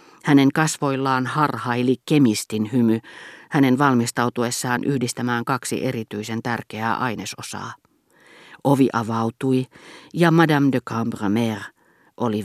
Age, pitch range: 40-59, 115-150 Hz